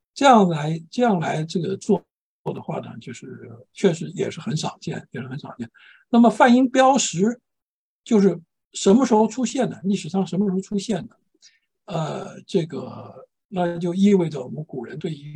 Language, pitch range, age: Chinese, 145-200 Hz, 60-79